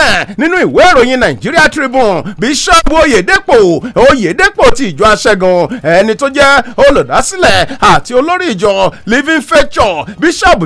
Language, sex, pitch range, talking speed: English, male, 225-330 Hz, 165 wpm